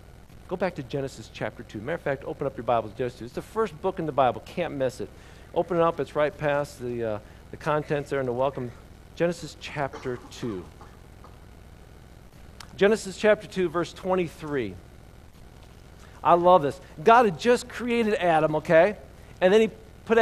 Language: English